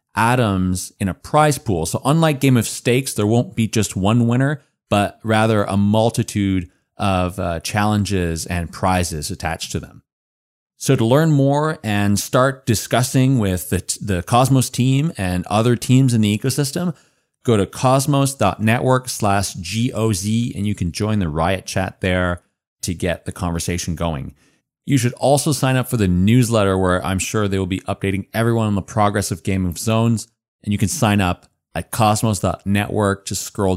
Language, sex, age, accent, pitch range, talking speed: English, male, 30-49, American, 95-120 Hz, 170 wpm